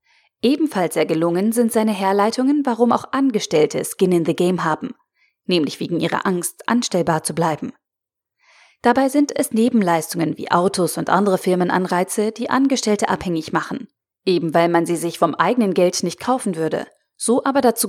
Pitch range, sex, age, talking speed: 180-245 Hz, female, 30-49, 160 wpm